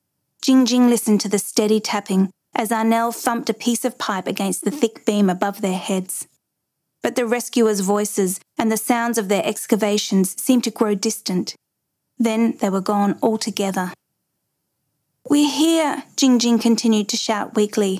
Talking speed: 160 wpm